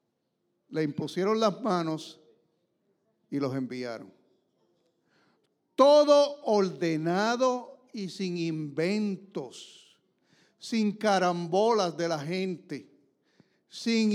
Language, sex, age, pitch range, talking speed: English, male, 60-79, 155-215 Hz, 75 wpm